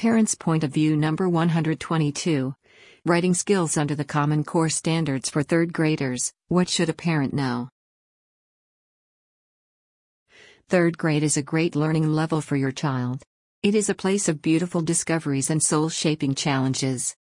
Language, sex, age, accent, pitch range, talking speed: English, female, 50-69, American, 140-170 Hz, 140 wpm